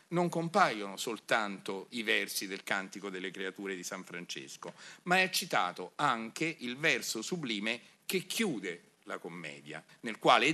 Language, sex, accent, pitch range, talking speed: Italian, male, native, 105-165 Hz, 140 wpm